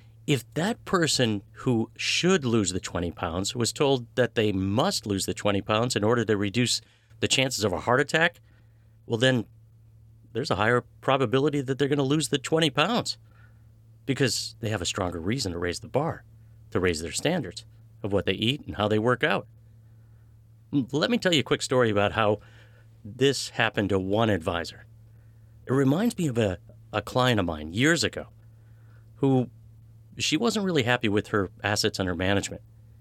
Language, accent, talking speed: English, American, 180 wpm